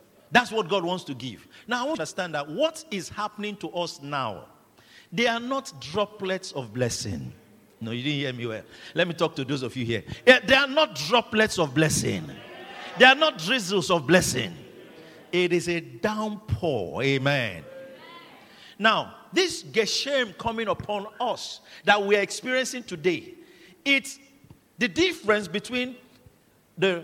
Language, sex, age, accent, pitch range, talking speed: English, male, 50-69, Nigerian, 170-255 Hz, 160 wpm